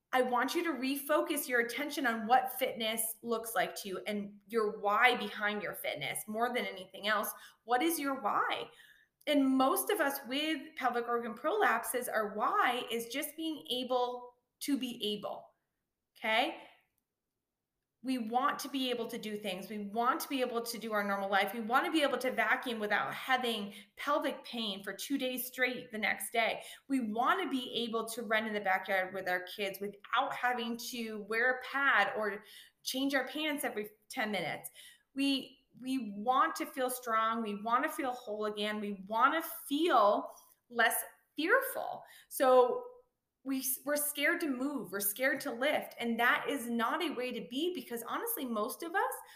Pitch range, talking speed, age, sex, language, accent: 220-280 Hz, 180 wpm, 20-39, female, English, American